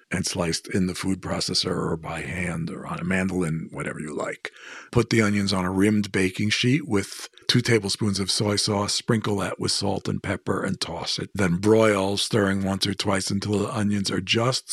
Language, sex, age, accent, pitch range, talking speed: English, male, 50-69, American, 95-110 Hz, 205 wpm